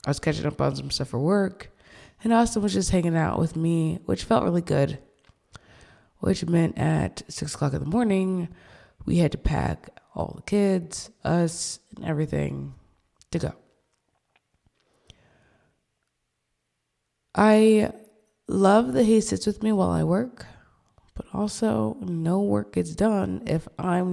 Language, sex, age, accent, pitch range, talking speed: English, female, 20-39, American, 145-200 Hz, 145 wpm